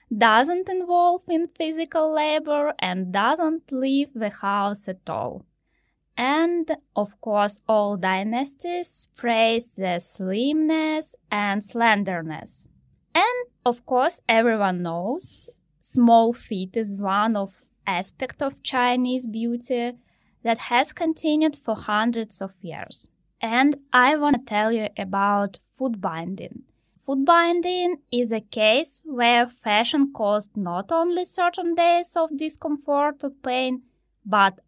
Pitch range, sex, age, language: 205-300 Hz, female, 20-39, English